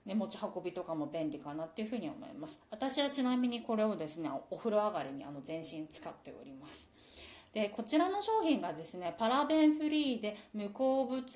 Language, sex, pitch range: Japanese, female, 165-255 Hz